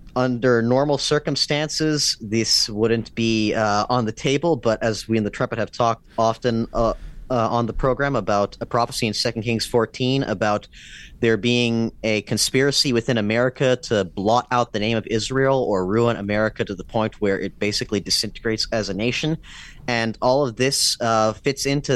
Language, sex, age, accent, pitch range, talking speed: English, male, 30-49, American, 105-125 Hz, 180 wpm